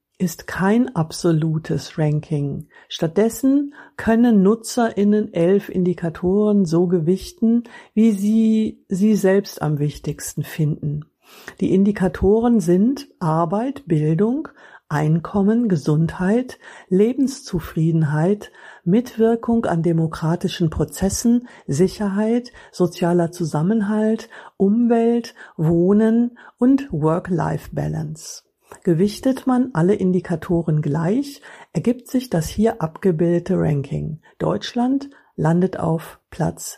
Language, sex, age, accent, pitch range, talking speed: German, female, 50-69, German, 160-220 Hz, 85 wpm